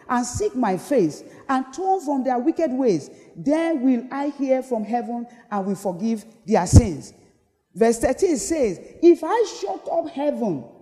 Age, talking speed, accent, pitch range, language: 40-59, 160 wpm, Nigerian, 225-305 Hz, English